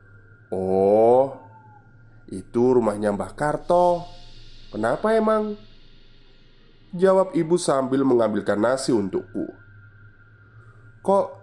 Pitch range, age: 110-140 Hz, 20-39